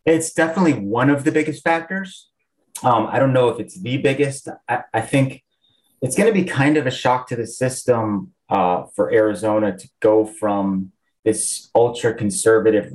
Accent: American